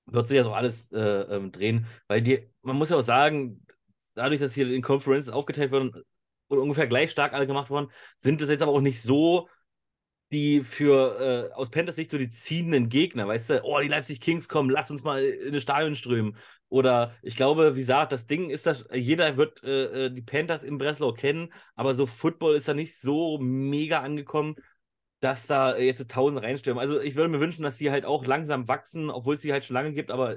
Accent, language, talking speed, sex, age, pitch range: German, German, 215 wpm, male, 30-49, 115-145 Hz